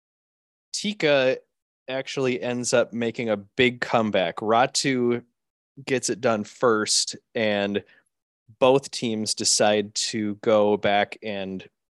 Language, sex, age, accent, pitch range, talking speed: English, male, 20-39, American, 105-140 Hz, 105 wpm